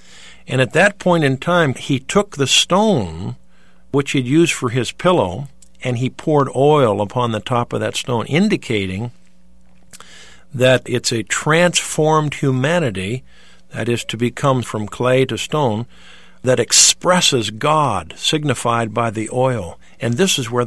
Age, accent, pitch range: 50-69, American, 110-155 Hz